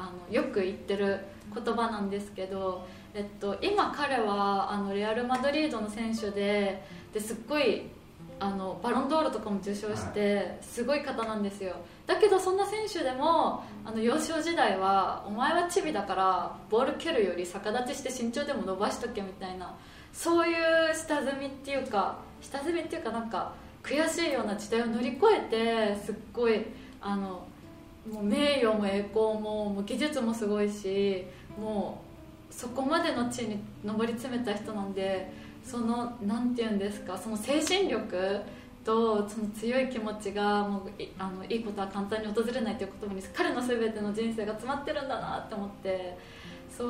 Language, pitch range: Japanese, 200-260 Hz